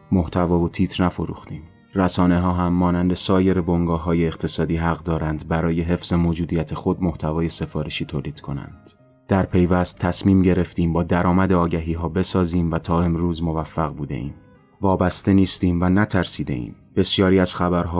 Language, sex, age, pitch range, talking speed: Persian, male, 30-49, 80-95 Hz, 145 wpm